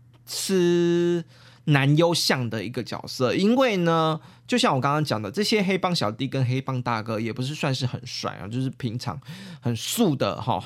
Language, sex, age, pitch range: Chinese, male, 20-39, 125-165 Hz